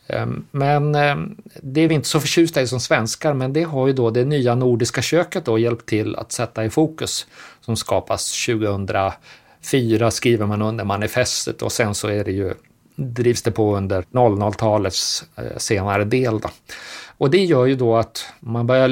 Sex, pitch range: male, 110-130 Hz